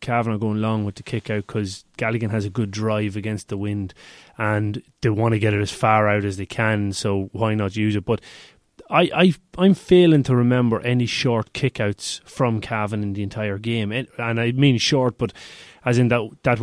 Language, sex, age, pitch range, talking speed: English, male, 30-49, 105-125 Hz, 210 wpm